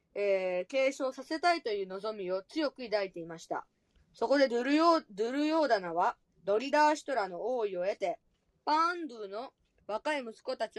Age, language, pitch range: 20-39, Japanese, 210-290 Hz